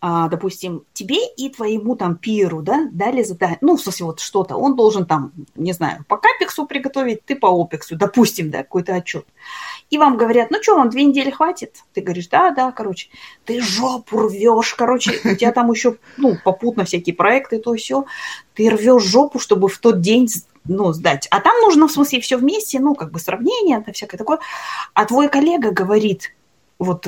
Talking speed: 190 wpm